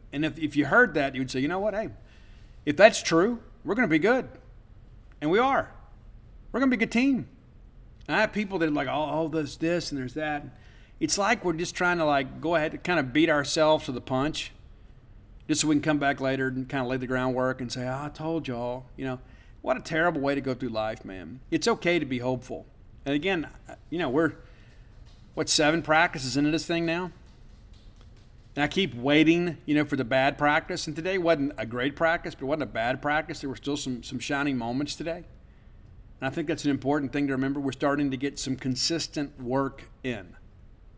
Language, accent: English, American